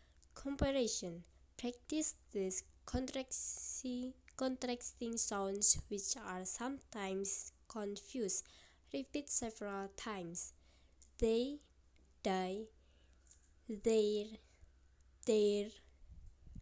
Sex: female